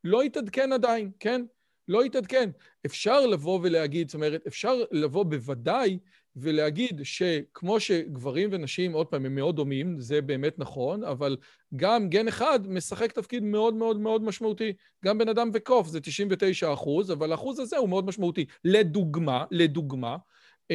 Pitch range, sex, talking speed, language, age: 160-215 Hz, male, 145 wpm, Hebrew, 40-59